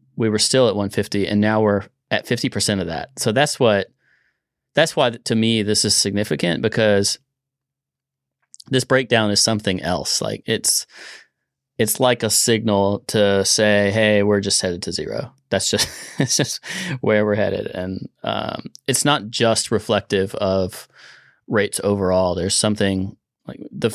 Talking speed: 155 wpm